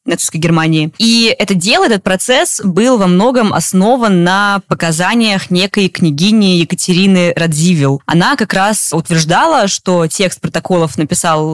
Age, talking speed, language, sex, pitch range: 20-39, 125 wpm, Russian, female, 160-195 Hz